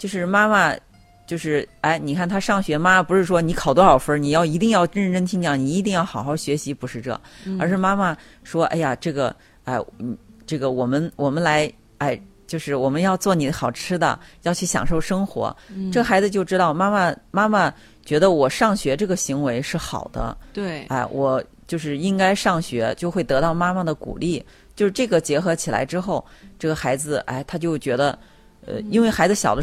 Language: Chinese